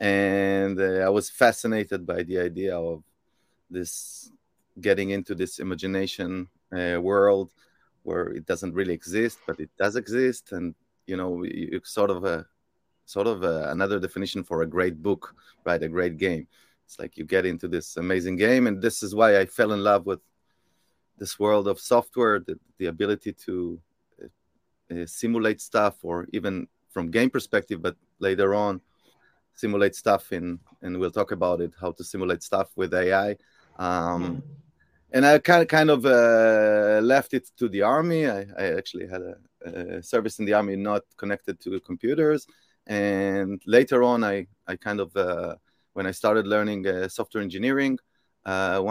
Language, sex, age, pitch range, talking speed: English, male, 30-49, 90-105 Hz, 170 wpm